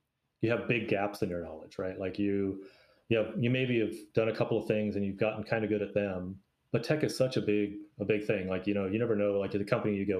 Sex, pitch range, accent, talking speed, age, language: male, 95-115 Hz, American, 280 wpm, 30-49, English